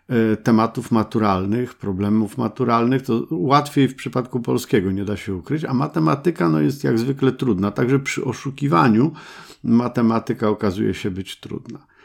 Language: Polish